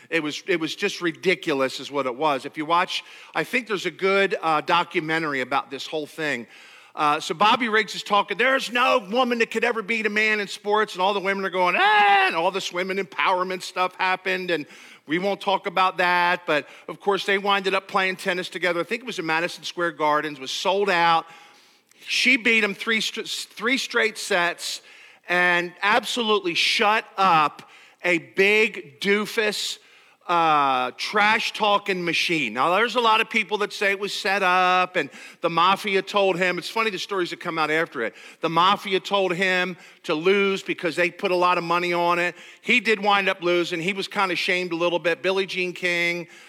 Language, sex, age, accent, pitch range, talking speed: English, male, 50-69, American, 170-205 Hz, 200 wpm